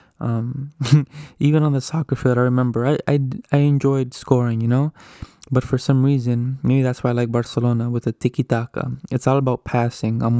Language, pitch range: English, 120-135 Hz